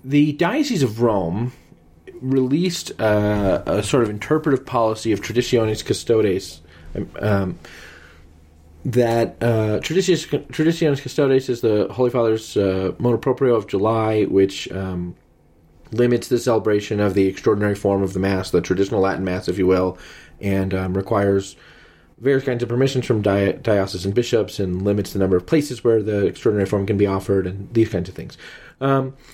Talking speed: 155 wpm